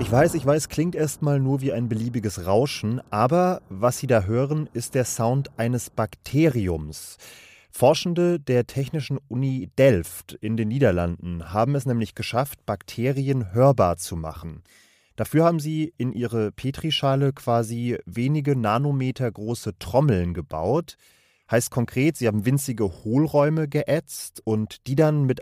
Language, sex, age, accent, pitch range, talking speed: German, male, 30-49, German, 110-140 Hz, 140 wpm